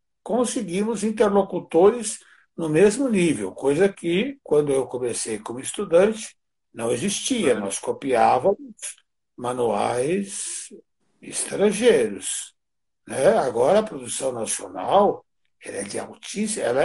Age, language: 60-79, Portuguese